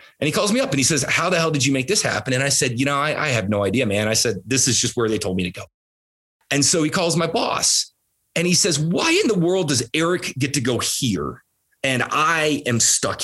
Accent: American